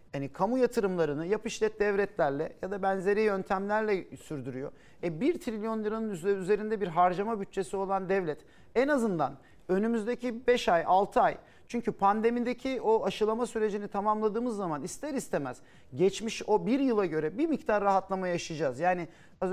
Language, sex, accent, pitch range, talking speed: Turkish, male, native, 180-230 Hz, 145 wpm